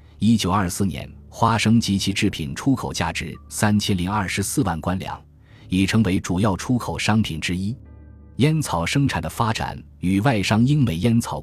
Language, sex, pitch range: Chinese, male, 85-115 Hz